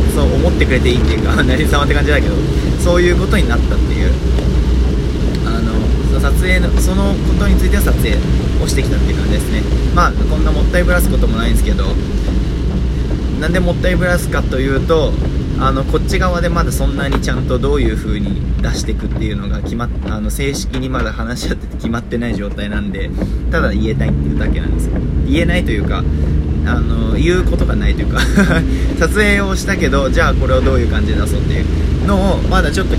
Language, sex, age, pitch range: Japanese, male, 20-39, 65-75 Hz